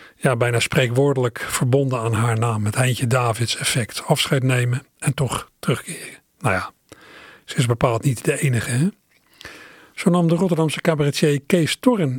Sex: male